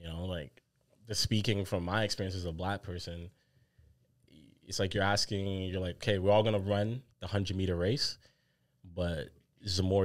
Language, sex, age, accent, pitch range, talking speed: English, male, 20-39, American, 90-110 Hz, 185 wpm